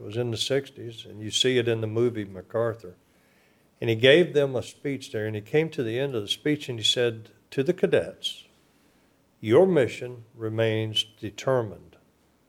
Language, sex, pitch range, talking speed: English, male, 105-120 Hz, 185 wpm